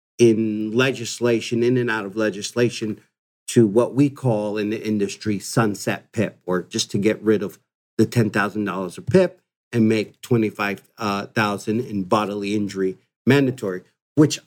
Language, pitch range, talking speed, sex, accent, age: English, 105-125 Hz, 140 wpm, male, American, 50-69